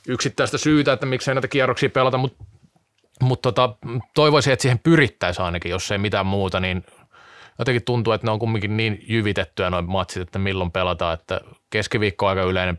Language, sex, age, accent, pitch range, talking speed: Finnish, male, 20-39, native, 90-125 Hz, 175 wpm